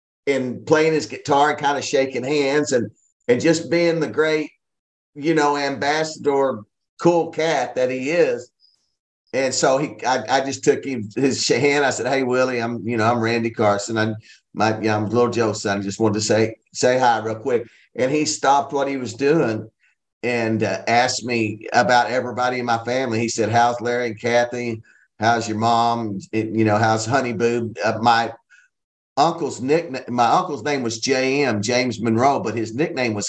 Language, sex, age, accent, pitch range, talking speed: English, male, 50-69, American, 110-145 Hz, 195 wpm